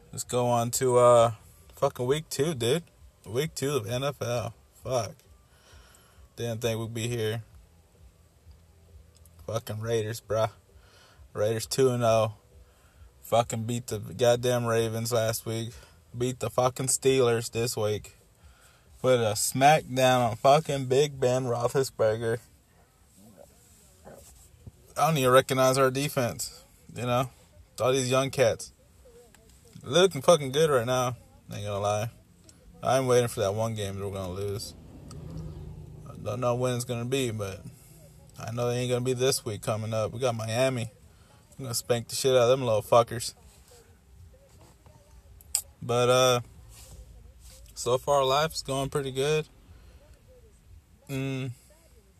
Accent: American